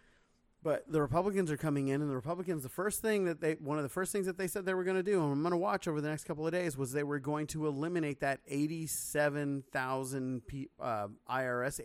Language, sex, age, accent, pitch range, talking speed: English, male, 30-49, American, 125-160 Hz, 240 wpm